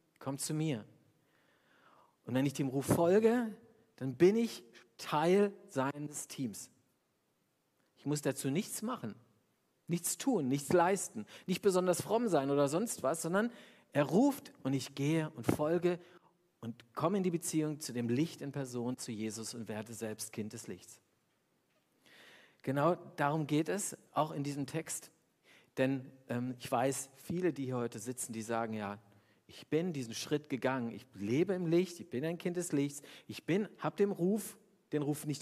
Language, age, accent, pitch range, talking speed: German, 50-69, German, 125-170 Hz, 170 wpm